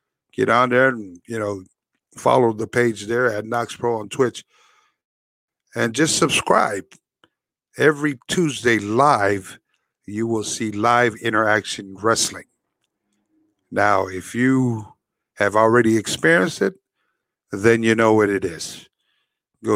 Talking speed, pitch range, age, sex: 125 wpm, 105-130 Hz, 50-69, male